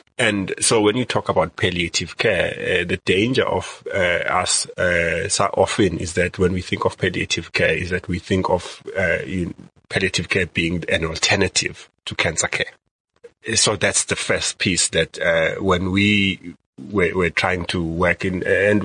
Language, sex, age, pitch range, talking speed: English, male, 30-49, 85-105 Hz, 180 wpm